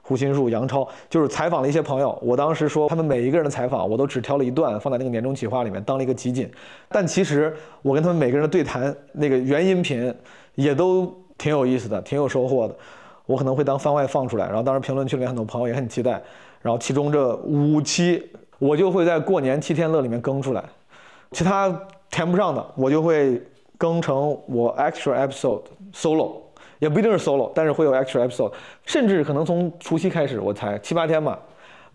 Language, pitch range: Chinese, 125-160 Hz